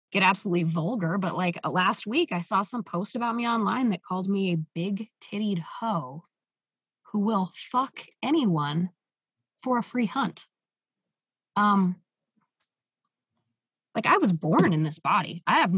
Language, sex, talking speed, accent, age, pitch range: English, female, 150 wpm, American, 20-39, 170-230 Hz